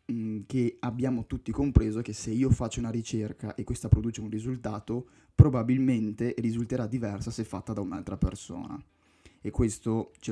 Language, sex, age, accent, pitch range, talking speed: Italian, male, 20-39, native, 110-125 Hz, 150 wpm